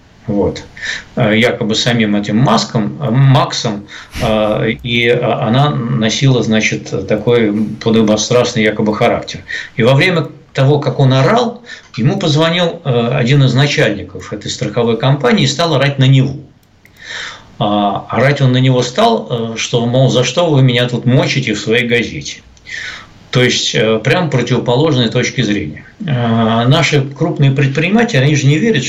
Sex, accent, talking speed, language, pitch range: male, native, 130 wpm, Russian, 110-140 Hz